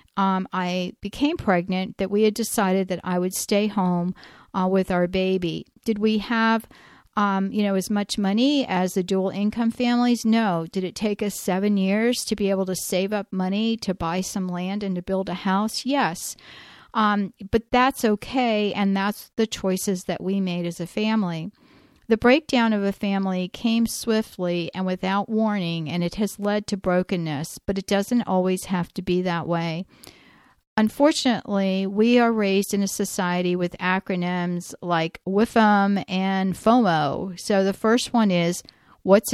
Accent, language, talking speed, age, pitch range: American, English, 170 wpm, 50-69, 185-220 Hz